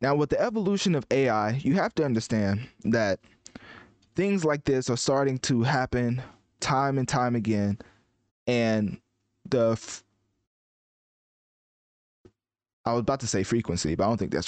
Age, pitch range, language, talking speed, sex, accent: 20-39, 110-130 Hz, English, 150 wpm, male, American